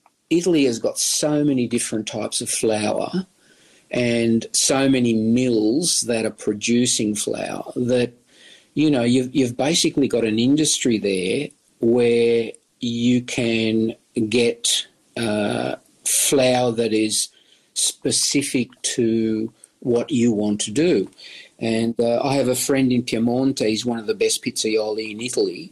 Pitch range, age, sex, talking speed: 110-130 Hz, 50-69, male, 135 wpm